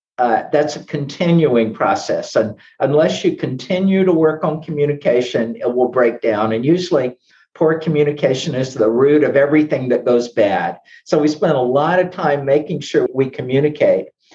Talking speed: 165 wpm